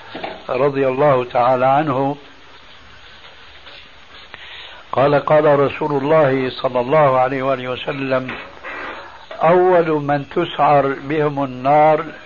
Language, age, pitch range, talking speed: Arabic, 60-79, 135-170 Hz, 90 wpm